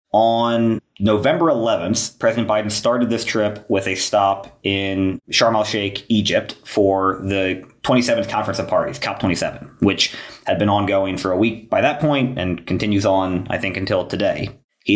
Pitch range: 90-105 Hz